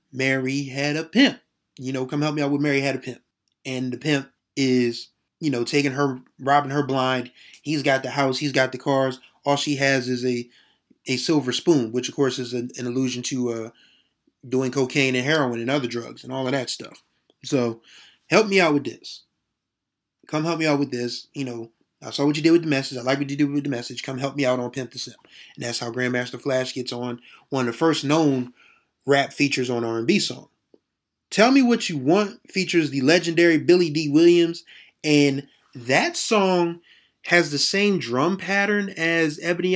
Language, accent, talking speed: English, American, 210 wpm